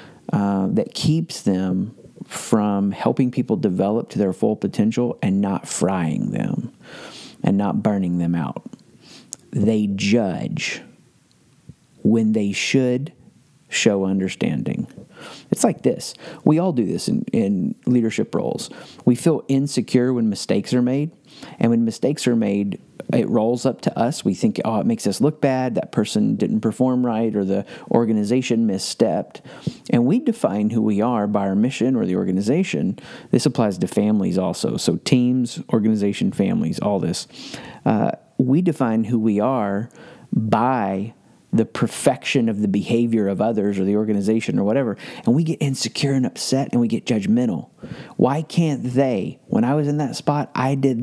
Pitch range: 110-145 Hz